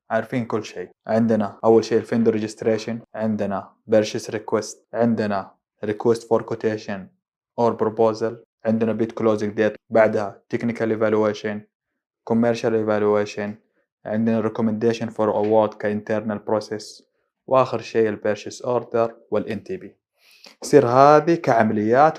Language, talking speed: Arabic, 110 wpm